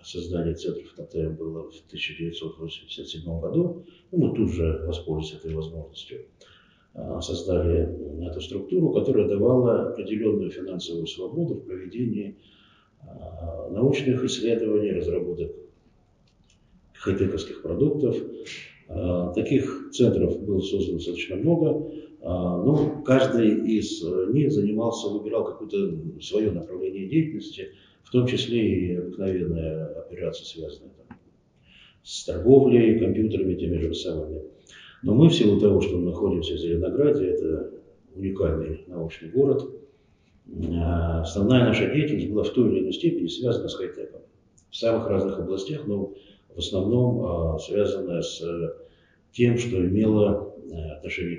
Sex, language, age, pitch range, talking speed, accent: male, Russian, 50-69, 85-130 Hz, 115 wpm, native